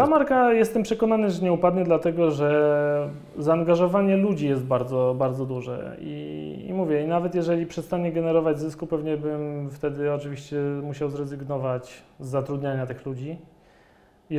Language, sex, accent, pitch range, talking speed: Polish, male, native, 145-175 Hz, 140 wpm